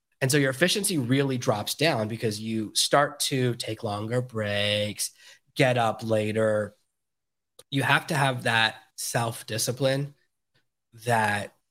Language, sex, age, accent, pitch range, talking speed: English, male, 20-39, American, 110-135 Hz, 125 wpm